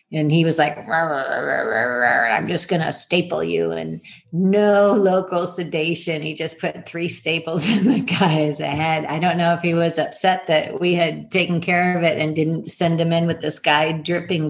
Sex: female